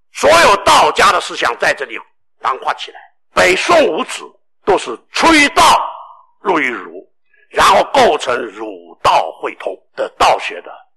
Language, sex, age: Chinese, male, 60-79